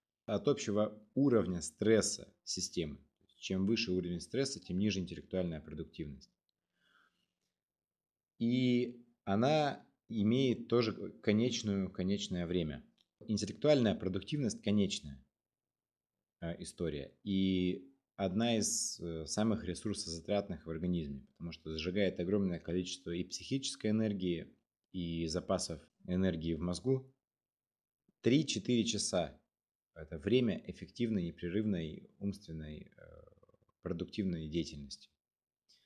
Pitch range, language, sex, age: 85-110 Hz, Russian, male, 30-49